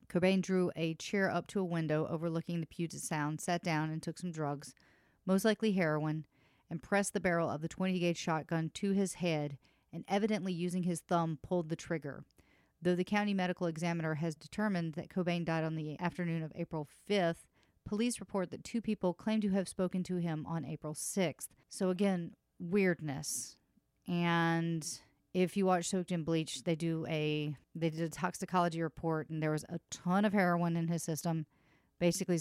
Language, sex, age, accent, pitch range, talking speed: English, female, 40-59, American, 160-185 Hz, 185 wpm